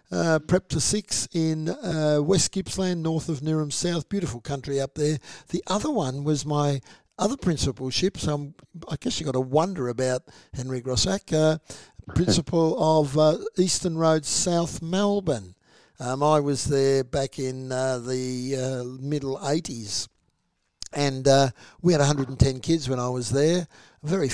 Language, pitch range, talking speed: English, 140-175 Hz, 160 wpm